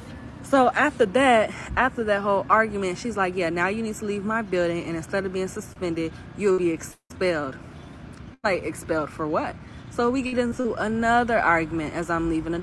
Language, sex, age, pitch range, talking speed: English, female, 20-39, 165-215 Hz, 185 wpm